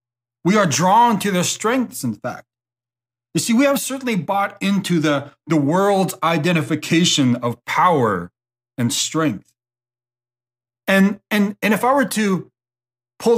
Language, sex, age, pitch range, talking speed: English, male, 30-49, 125-195 Hz, 140 wpm